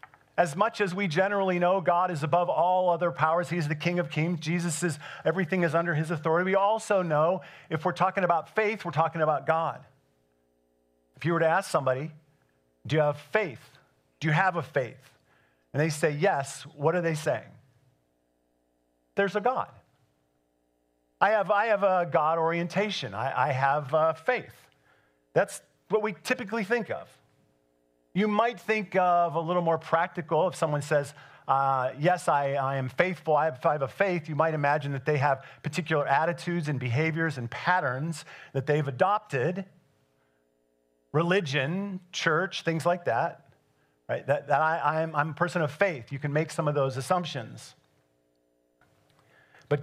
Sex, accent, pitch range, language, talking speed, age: male, American, 135-180 Hz, English, 170 wpm, 40-59